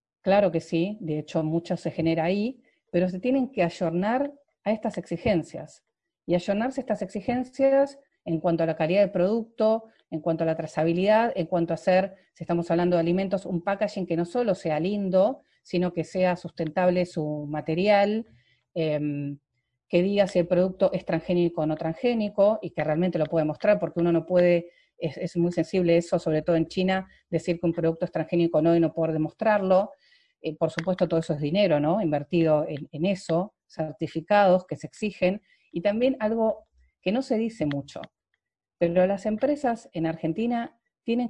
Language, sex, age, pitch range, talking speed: Spanish, female, 40-59, 165-215 Hz, 185 wpm